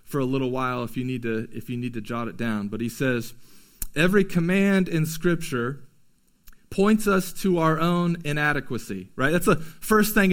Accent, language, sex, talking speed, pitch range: American, English, male, 190 wpm, 145-200 Hz